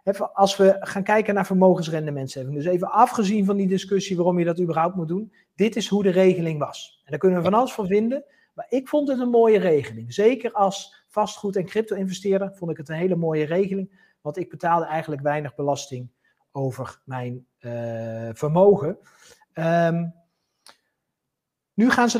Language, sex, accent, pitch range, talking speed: Dutch, male, Dutch, 145-195 Hz, 180 wpm